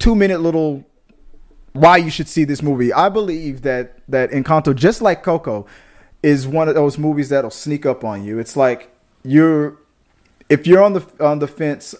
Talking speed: 180 wpm